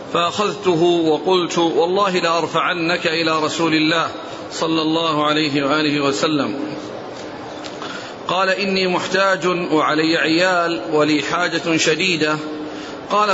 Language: Arabic